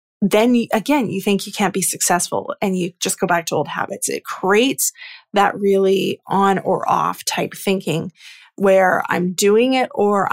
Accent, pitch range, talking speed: American, 190-230 Hz, 175 wpm